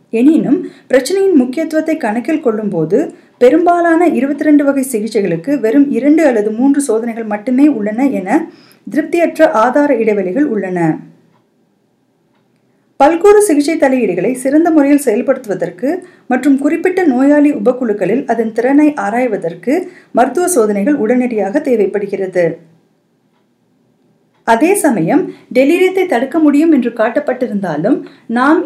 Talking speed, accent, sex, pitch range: 95 wpm, native, female, 220-300 Hz